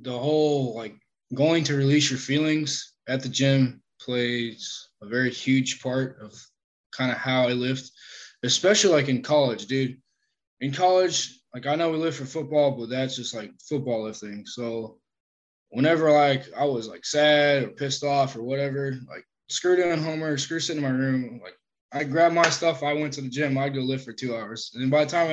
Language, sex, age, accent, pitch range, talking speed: English, male, 20-39, American, 125-150 Hz, 200 wpm